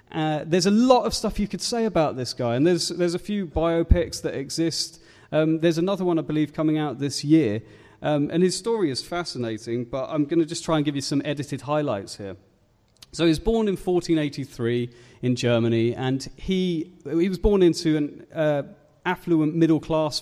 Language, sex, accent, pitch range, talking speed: English, male, British, 135-170 Hz, 200 wpm